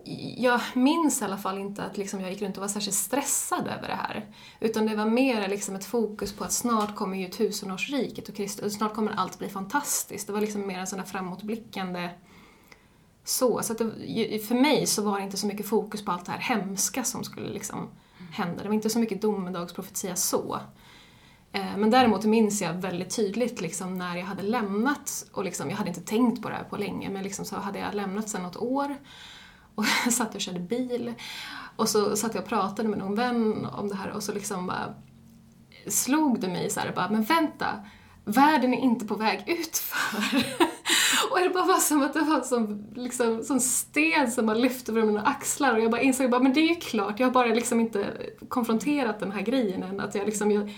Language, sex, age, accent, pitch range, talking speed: Swedish, female, 20-39, native, 200-245 Hz, 215 wpm